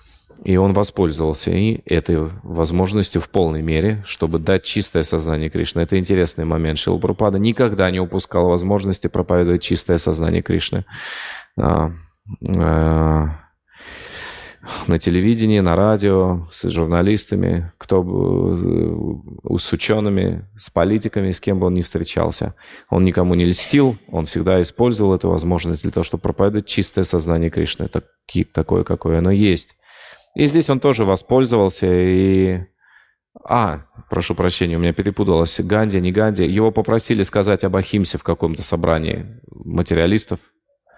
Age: 30-49